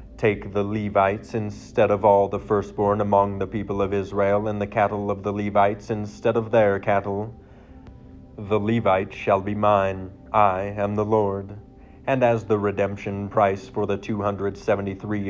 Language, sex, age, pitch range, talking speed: English, male, 30-49, 100-110 Hz, 155 wpm